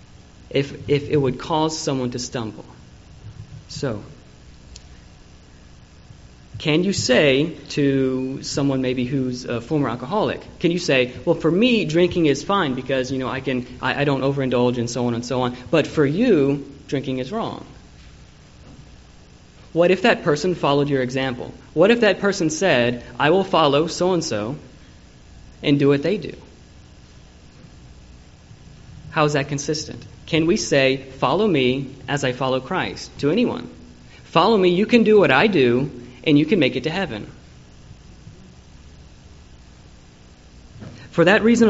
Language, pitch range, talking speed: English, 120-160 Hz, 150 wpm